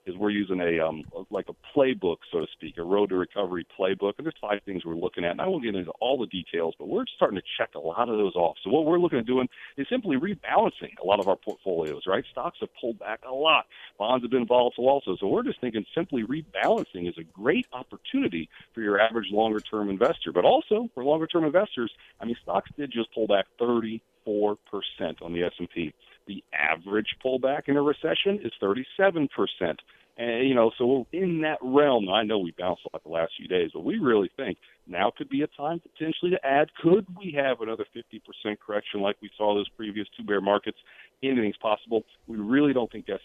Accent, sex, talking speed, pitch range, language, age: American, male, 215 wpm, 100-140 Hz, English, 40-59